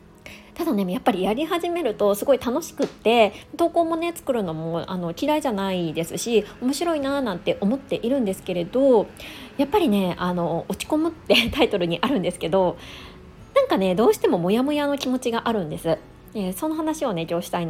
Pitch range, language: 185-295 Hz, Japanese